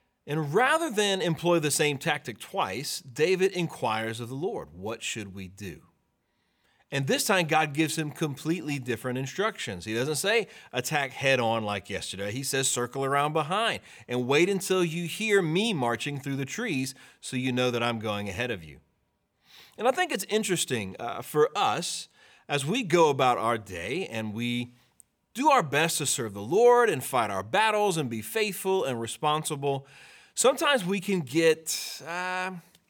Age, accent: 30-49, American